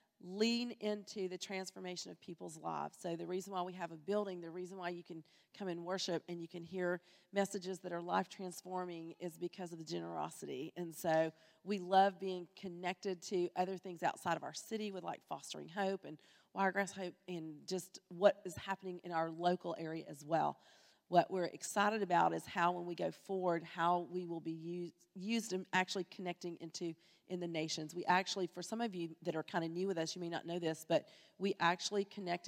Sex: female